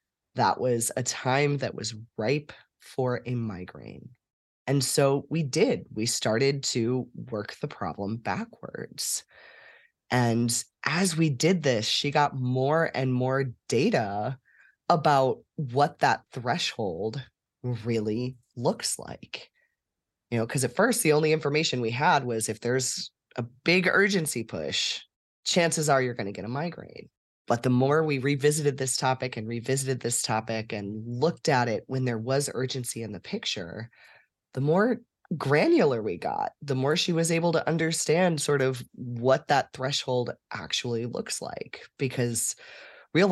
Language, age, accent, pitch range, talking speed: English, 20-39, American, 120-155 Hz, 150 wpm